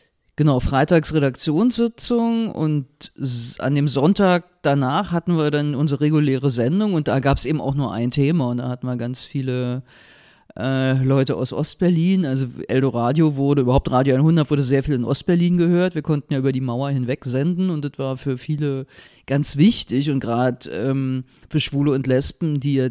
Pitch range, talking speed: 130-160 Hz, 180 wpm